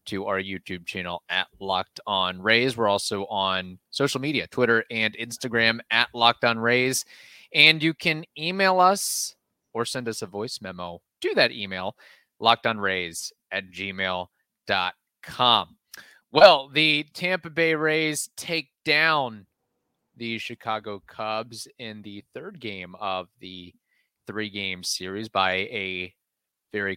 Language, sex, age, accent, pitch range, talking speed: English, male, 30-49, American, 100-140 Hz, 130 wpm